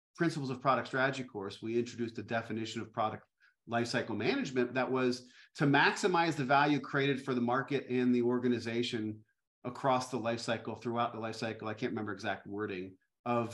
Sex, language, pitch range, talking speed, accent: male, English, 120-150 Hz, 180 wpm, American